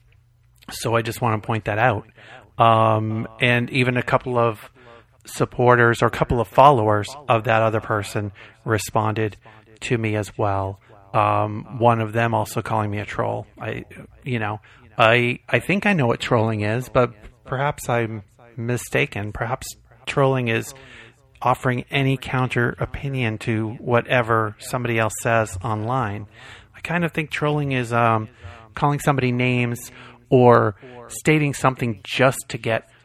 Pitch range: 110-125 Hz